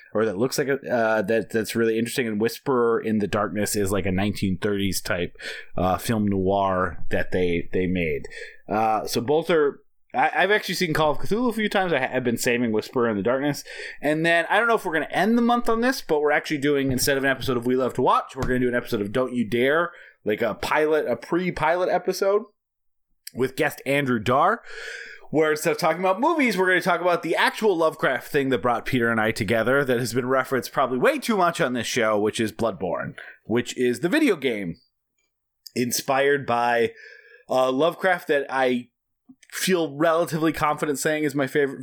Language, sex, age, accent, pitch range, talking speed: English, male, 30-49, American, 115-165 Hz, 210 wpm